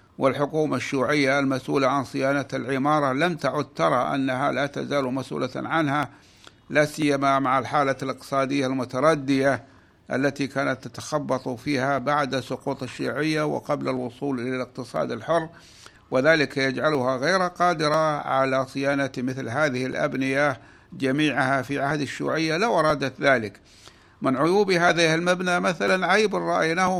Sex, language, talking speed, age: male, Arabic, 120 wpm, 60-79